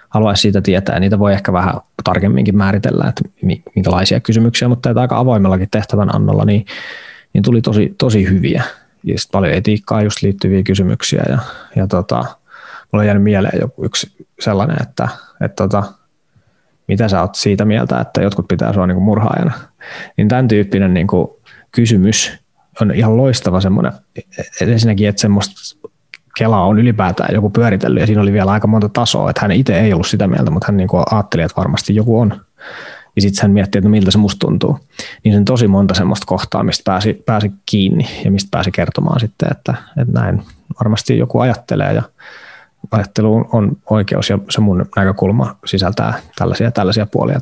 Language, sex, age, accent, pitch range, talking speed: Finnish, male, 20-39, native, 100-115 Hz, 170 wpm